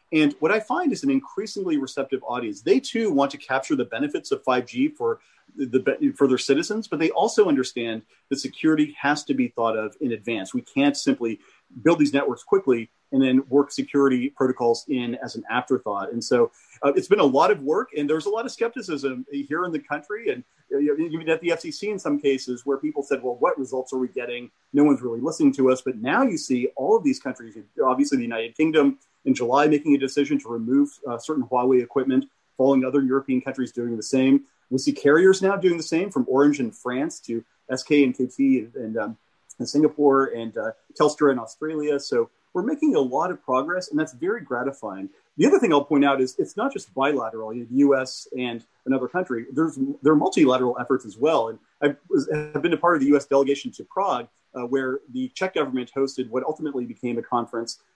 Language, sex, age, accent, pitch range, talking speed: English, male, 40-59, American, 130-155 Hz, 210 wpm